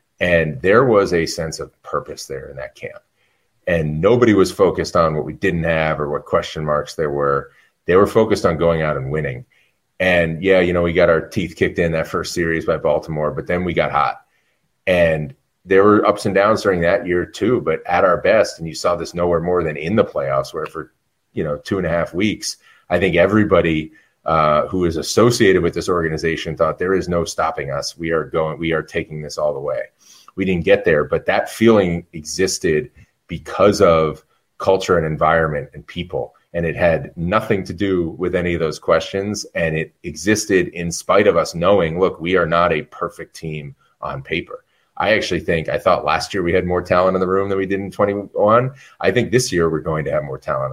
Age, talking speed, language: 30-49, 220 wpm, English